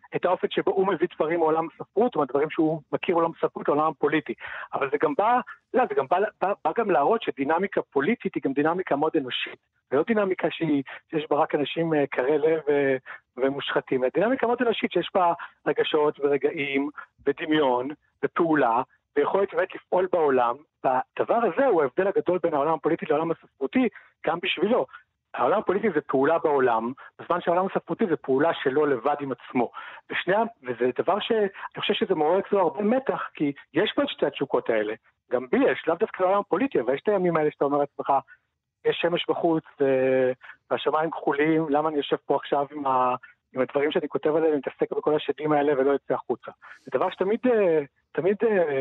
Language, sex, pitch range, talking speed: Hebrew, male, 145-205 Hz, 175 wpm